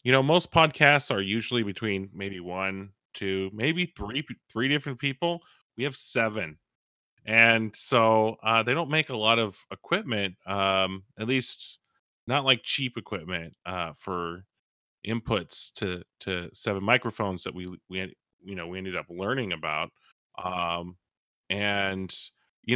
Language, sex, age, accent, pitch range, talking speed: English, male, 30-49, American, 95-125 Hz, 145 wpm